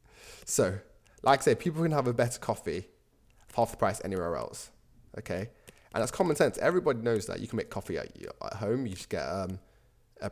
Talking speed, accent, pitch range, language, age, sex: 205 wpm, British, 100-125 Hz, English, 20-39, male